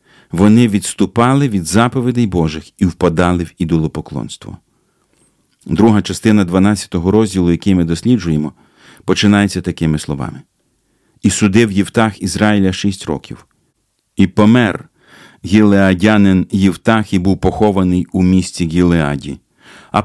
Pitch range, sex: 90-110 Hz, male